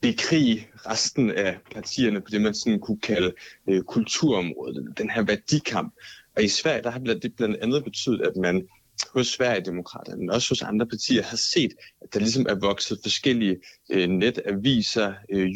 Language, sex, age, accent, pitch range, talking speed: Danish, male, 30-49, native, 95-125 Hz, 170 wpm